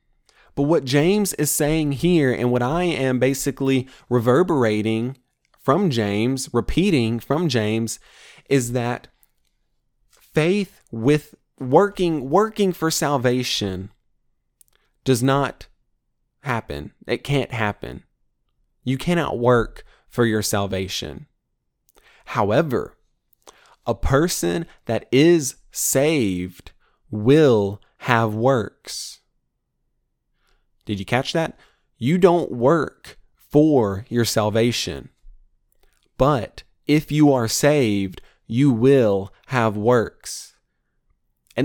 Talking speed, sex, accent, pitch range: 95 wpm, male, American, 115-150 Hz